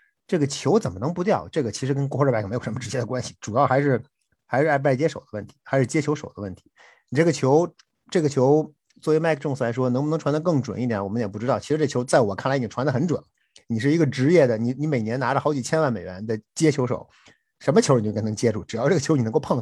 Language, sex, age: Chinese, male, 50-69